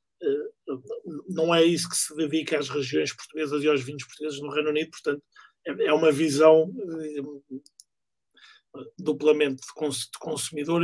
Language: Portuguese